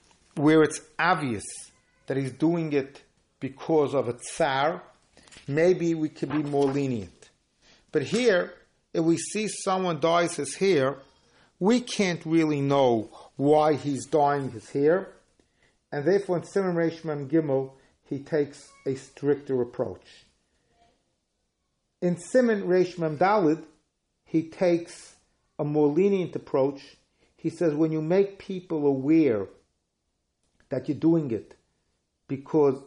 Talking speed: 125 wpm